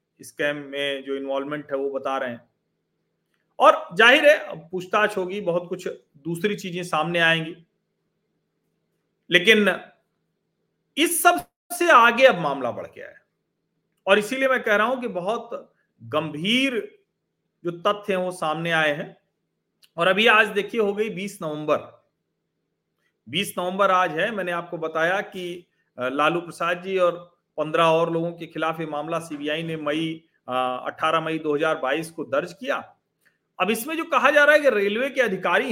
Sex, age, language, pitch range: male, 40-59, Hindi, 155-220 Hz